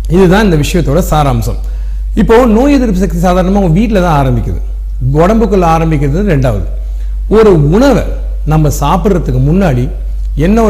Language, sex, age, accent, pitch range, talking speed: Tamil, male, 40-59, native, 130-185 Hz, 125 wpm